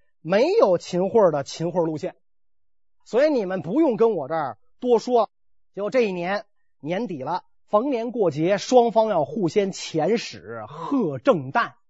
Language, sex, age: Chinese, male, 30-49